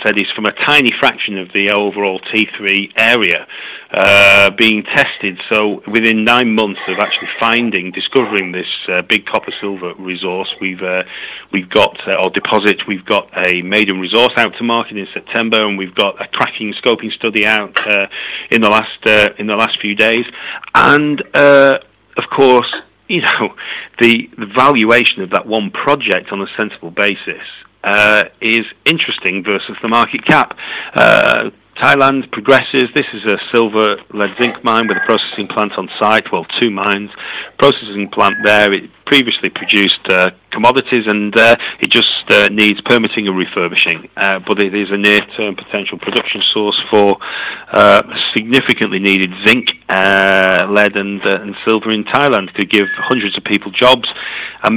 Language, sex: English, male